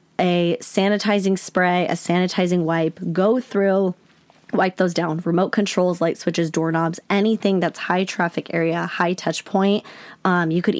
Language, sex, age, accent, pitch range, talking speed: English, female, 20-39, American, 175-205 Hz, 150 wpm